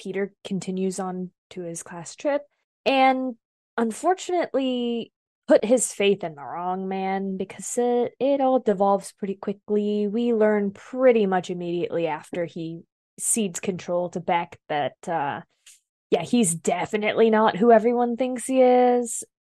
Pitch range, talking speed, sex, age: 180-225 Hz, 140 wpm, female, 20-39